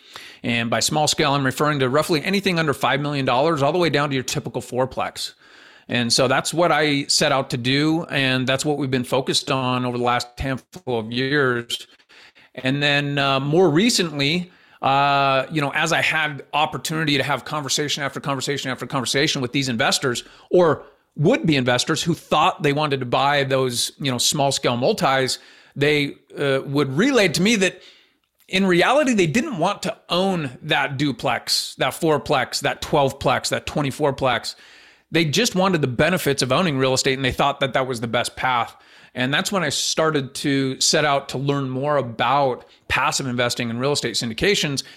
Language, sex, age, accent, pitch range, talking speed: English, male, 40-59, American, 130-155 Hz, 185 wpm